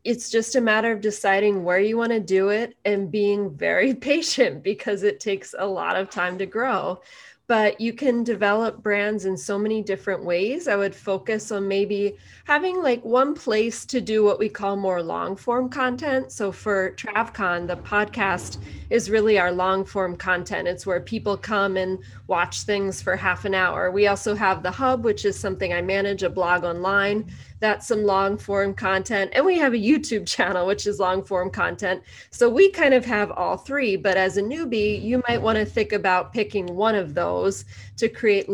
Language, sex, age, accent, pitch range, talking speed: English, female, 20-39, American, 190-220 Hz, 195 wpm